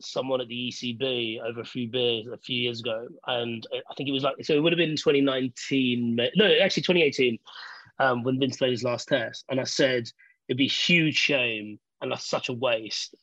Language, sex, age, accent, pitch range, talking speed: English, male, 30-49, British, 125-165 Hz, 210 wpm